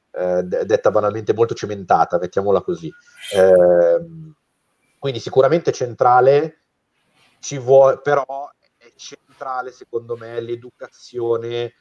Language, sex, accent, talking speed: Italian, male, native, 95 wpm